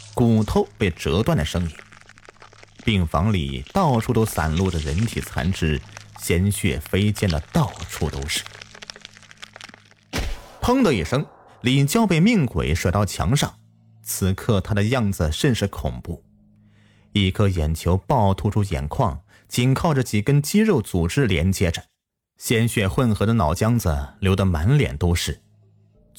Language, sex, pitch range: Chinese, male, 85-115 Hz